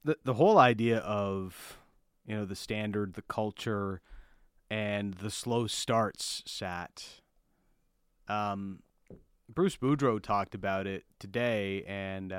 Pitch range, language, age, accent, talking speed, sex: 105-140 Hz, English, 30-49, American, 120 wpm, male